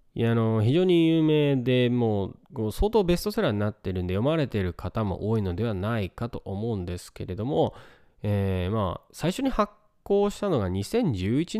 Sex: male